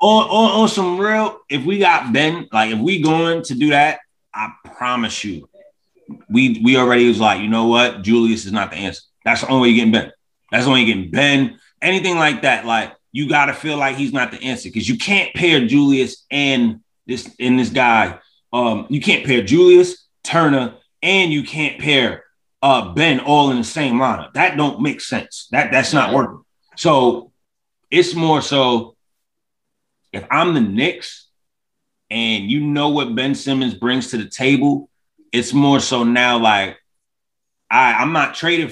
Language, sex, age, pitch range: English, male, 30-49, 120-155 Hz